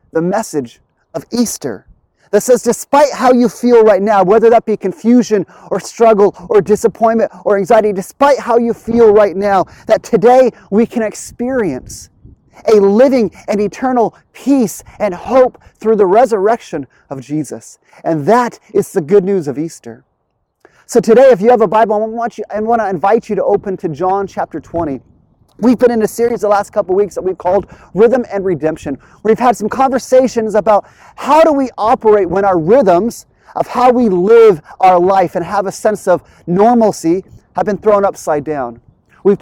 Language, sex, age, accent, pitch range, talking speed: English, male, 30-49, American, 185-235 Hz, 180 wpm